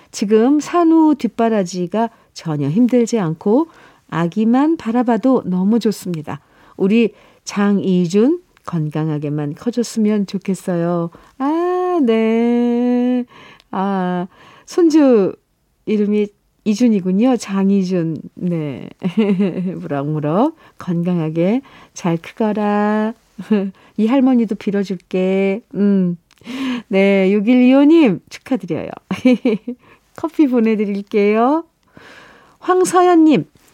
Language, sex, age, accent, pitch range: Korean, female, 40-59, native, 185-250 Hz